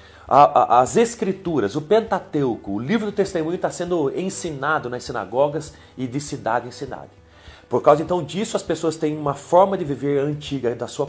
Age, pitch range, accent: 40-59, 135-190 Hz, Brazilian